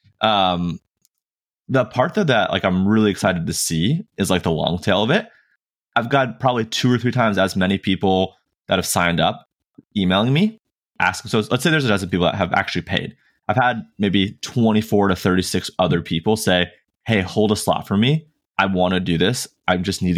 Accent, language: American, English